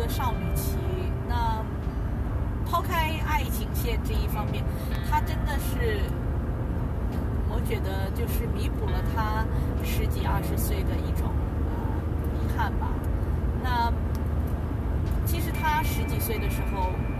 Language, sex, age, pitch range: Chinese, female, 20-39, 80-100 Hz